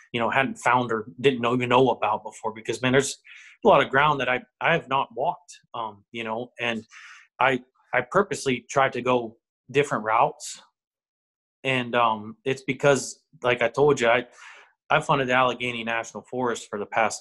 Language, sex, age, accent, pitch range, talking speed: English, male, 20-39, American, 115-135 Hz, 190 wpm